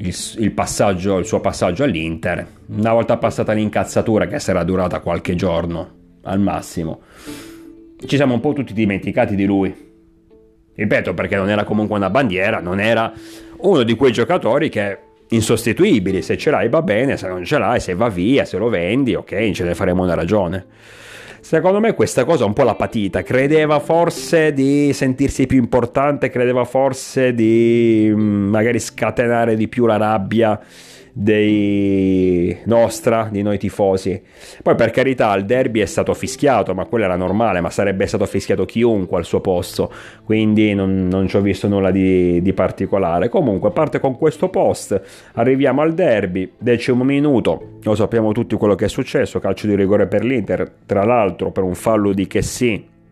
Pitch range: 95-115 Hz